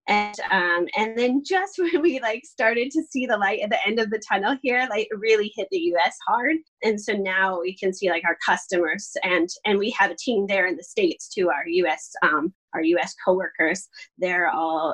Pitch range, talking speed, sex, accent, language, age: 180-230 Hz, 225 wpm, female, American, English, 20-39